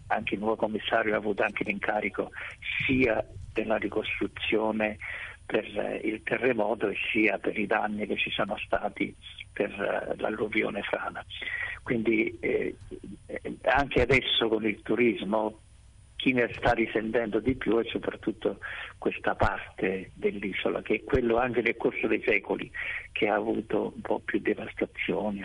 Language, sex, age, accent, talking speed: Italian, male, 50-69, native, 140 wpm